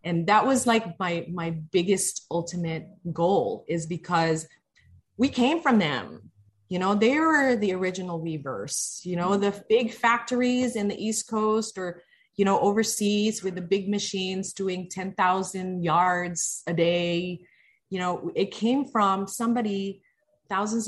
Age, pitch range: 30-49, 170-215 Hz